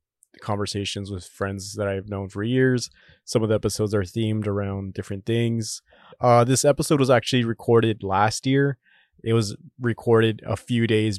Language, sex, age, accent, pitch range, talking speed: English, male, 20-39, American, 105-120 Hz, 165 wpm